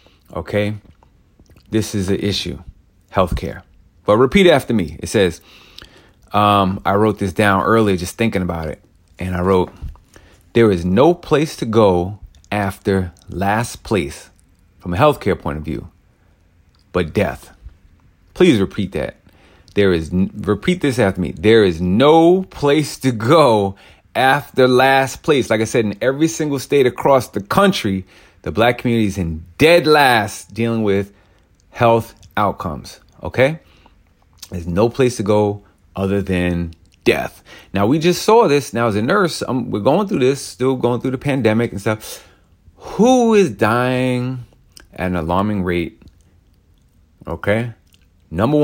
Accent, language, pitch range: American, English, 90-120 Hz